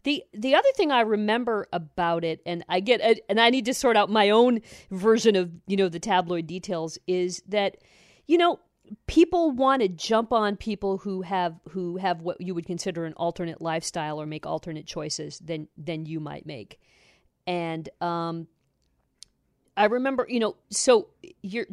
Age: 40-59